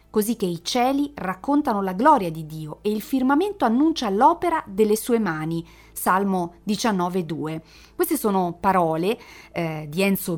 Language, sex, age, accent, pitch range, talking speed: Italian, female, 30-49, native, 170-210 Hz, 145 wpm